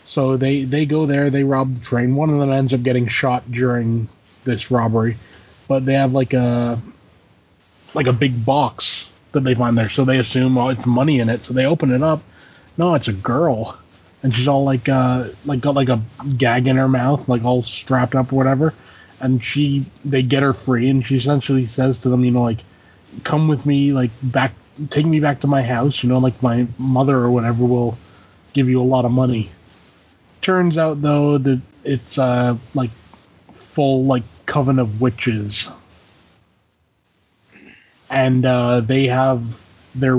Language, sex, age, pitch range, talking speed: English, male, 20-39, 115-140 Hz, 190 wpm